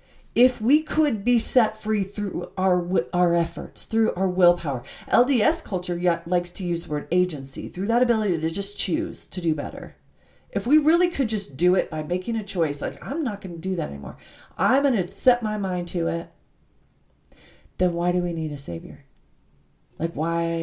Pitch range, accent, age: 155-215 Hz, American, 40-59